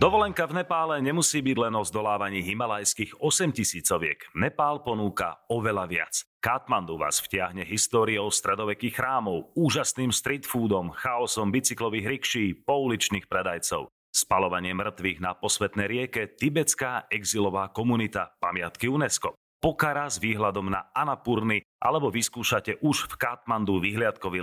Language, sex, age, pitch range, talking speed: Slovak, male, 40-59, 100-135 Hz, 125 wpm